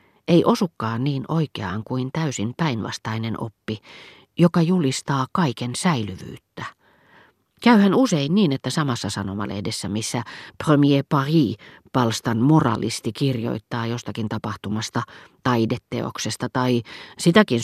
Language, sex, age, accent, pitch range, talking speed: Finnish, female, 40-59, native, 115-145 Hz, 100 wpm